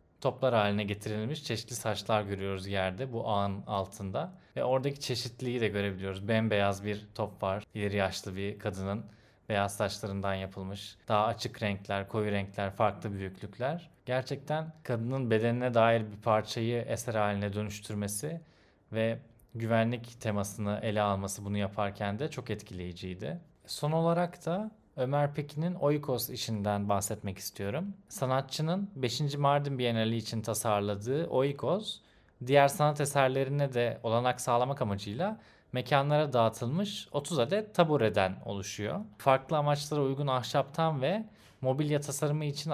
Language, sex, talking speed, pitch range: Turkish, male, 125 wpm, 105-140 Hz